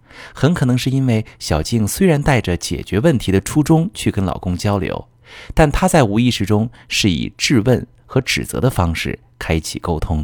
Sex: male